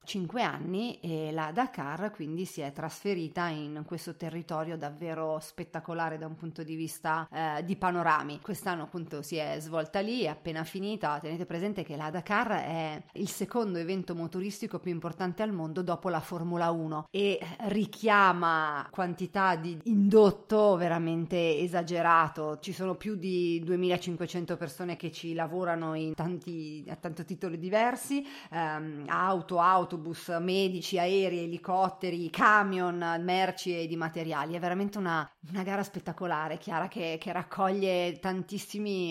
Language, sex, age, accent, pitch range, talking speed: Italian, female, 30-49, native, 165-190 Hz, 145 wpm